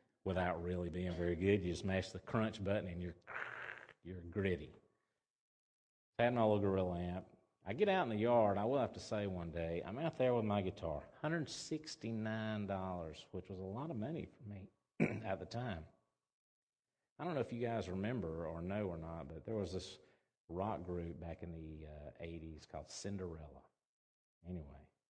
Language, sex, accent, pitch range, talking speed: English, male, American, 90-115 Hz, 180 wpm